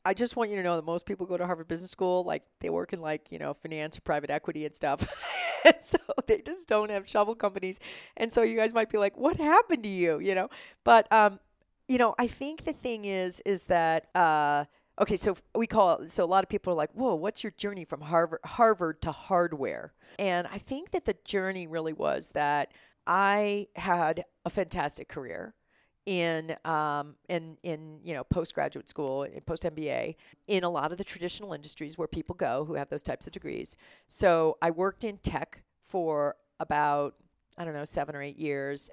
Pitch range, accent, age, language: 150-200 Hz, American, 40-59, English